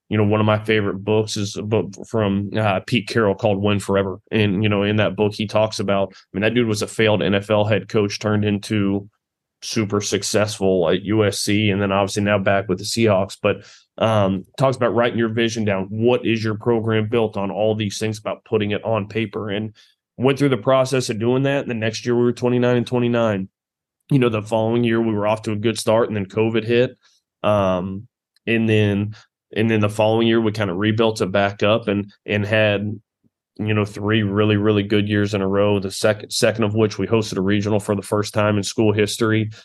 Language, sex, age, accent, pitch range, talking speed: English, male, 20-39, American, 100-110 Hz, 225 wpm